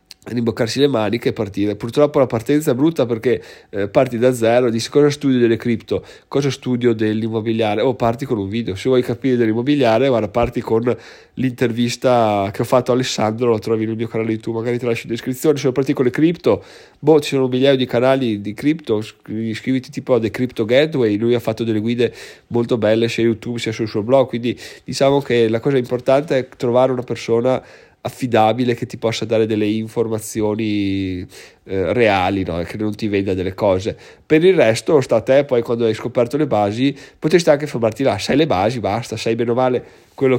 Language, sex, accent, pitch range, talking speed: Italian, male, native, 110-130 Hz, 205 wpm